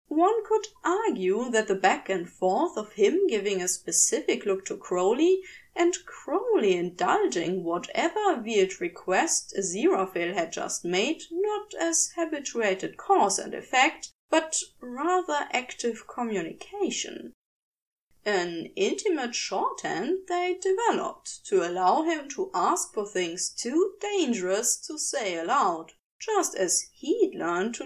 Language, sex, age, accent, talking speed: English, female, 20-39, German, 125 wpm